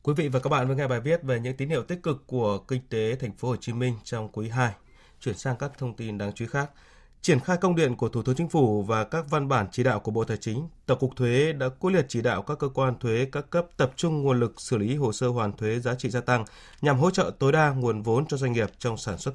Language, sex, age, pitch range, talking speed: Vietnamese, male, 20-39, 115-145 Hz, 295 wpm